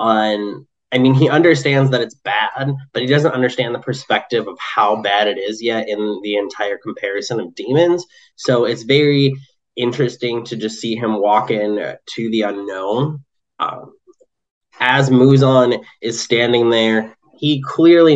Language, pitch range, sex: English, 105-130 Hz, male